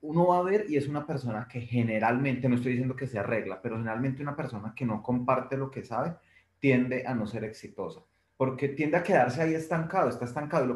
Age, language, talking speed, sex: 30-49, Spanish, 230 wpm, male